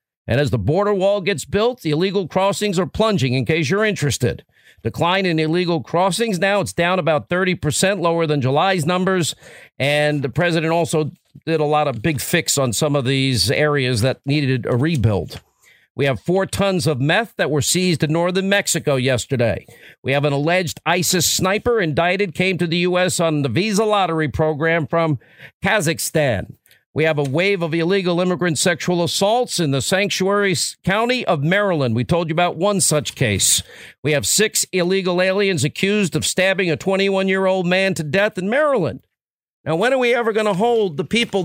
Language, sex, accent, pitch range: English, male, American, 155-200 Hz